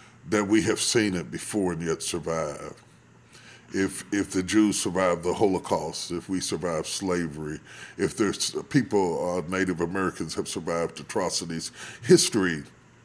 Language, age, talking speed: English, 40-59, 140 wpm